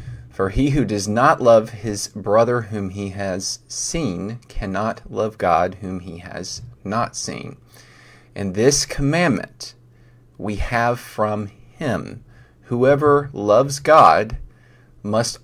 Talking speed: 120 wpm